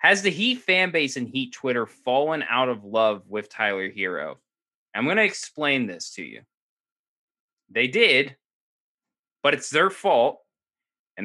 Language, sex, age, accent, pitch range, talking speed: English, male, 20-39, American, 125-180 Hz, 155 wpm